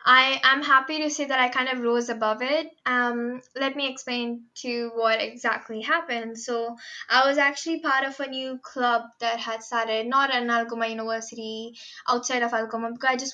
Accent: Indian